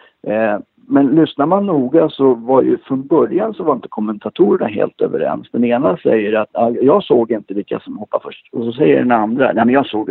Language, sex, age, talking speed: Swedish, male, 60-79, 210 wpm